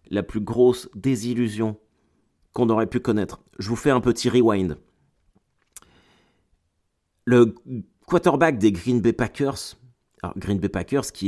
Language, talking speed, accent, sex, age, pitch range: French, 130 wpm, French, male, 30-49, 95-125 Hz